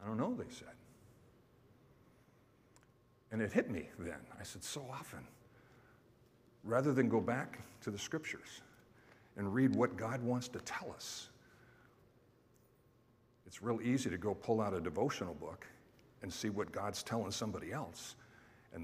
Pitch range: 110-125 Hz